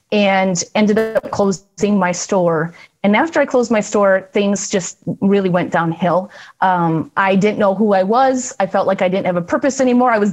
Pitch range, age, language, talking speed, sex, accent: 185-215 Hz, 30-49, English, 205 wpm, female, American